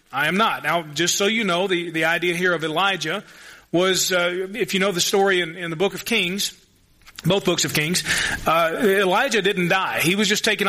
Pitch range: 170-215 Hz